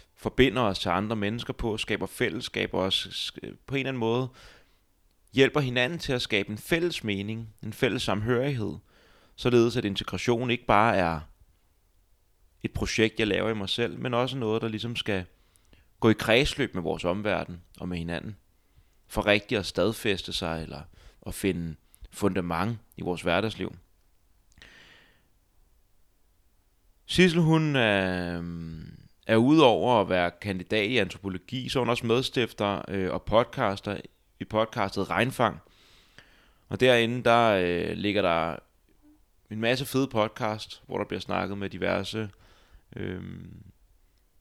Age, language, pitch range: 30-49, Danish, 95-115 Hz